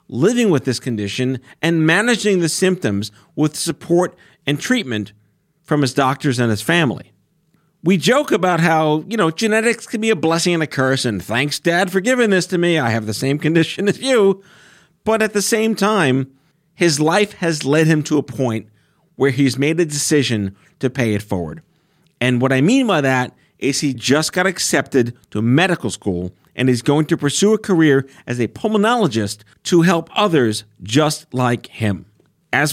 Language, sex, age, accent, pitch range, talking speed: English, male, 40-59, American, 125-180 Hz, 185 wpm